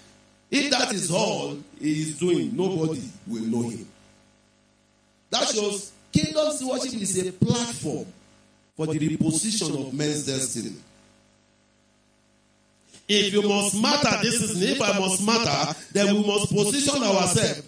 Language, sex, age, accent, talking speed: English, male, 50-69, Nigerian, 130 wpm